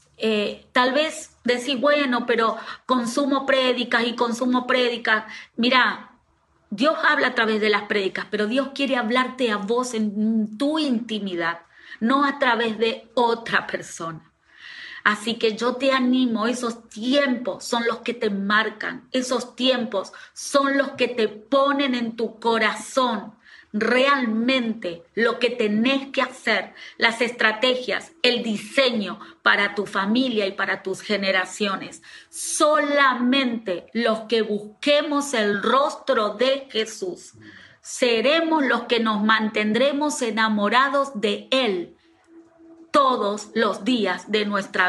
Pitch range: 215-270 Hz